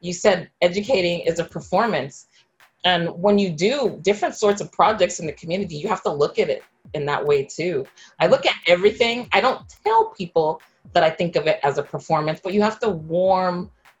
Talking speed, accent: 205 wpm, American